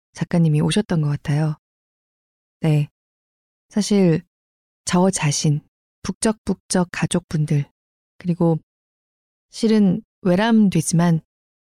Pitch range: 155-195 Hz